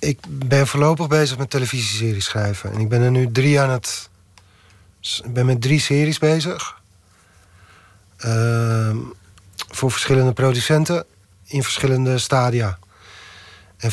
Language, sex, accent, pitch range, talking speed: Dutch, male, Dutch, 110-145 Hz, 120 wpm